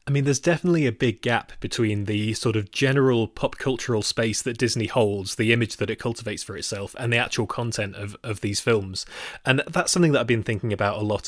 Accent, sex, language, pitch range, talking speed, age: British, male, English, 110-145 Hz, 230 wpm, 30-49